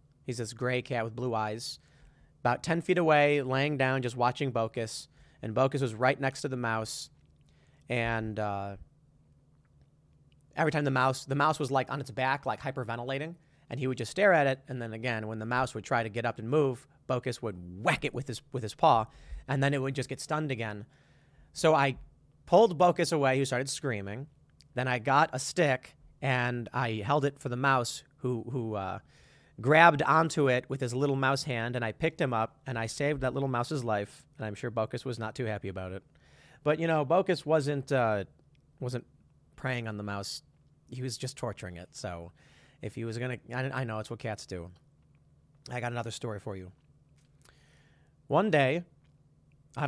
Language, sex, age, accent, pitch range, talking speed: English, male, 30-49, American, 115-145 Hz, 200 wpm